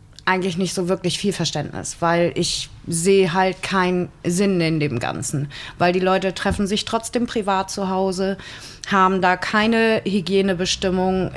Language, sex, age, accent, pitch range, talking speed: German, female, 30-49, German, 170-210 Hz, 150 wpm